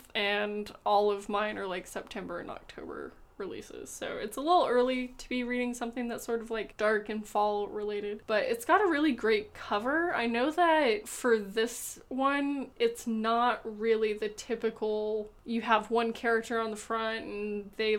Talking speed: 180 wpm